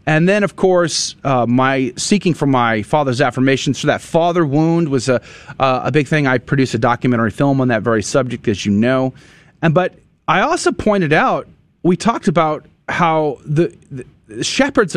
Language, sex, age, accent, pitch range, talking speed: English, male, 30-49, American, 125-180 Hz, 185 wpm